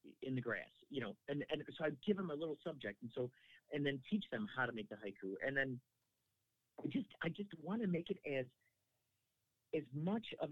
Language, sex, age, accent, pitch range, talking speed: English, male, 50-69, American, 125-175 Hz, 220 wpm